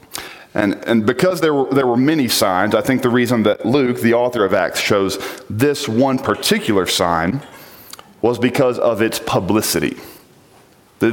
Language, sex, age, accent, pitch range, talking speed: English, male, 40-59, American, 100-125 Hz, 155 wpm